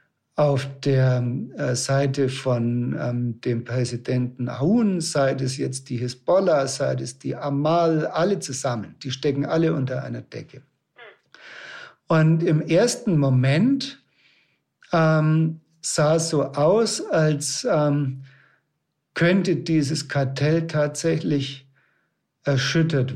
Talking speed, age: 105 wpm, 60-79